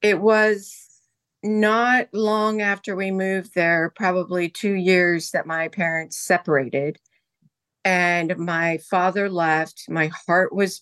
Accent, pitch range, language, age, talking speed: American, 165-200 Hz, English, 50-69, 120 wpm